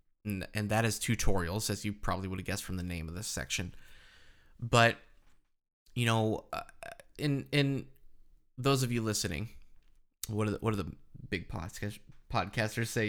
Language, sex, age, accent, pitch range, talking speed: English, male, 20-39, American, 100-120 Hz, 160 wpm